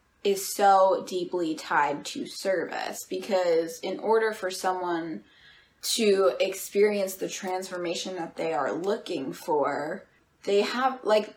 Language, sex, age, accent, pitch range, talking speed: English, female, 10-29, American, 180-215 Hz, 120 wpm